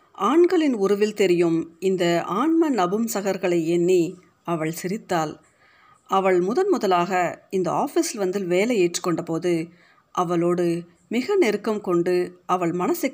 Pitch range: 175-210 Hz